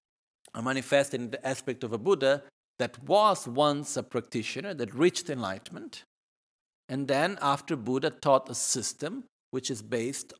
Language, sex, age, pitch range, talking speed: Italian, male, 50-69, 115-150 Hz, 150 wpm